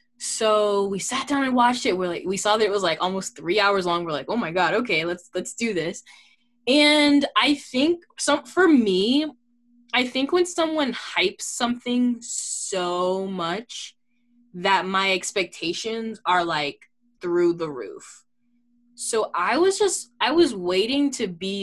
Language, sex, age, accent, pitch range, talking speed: English, female, 10-29, American, 180-245 Hz, 165 wpm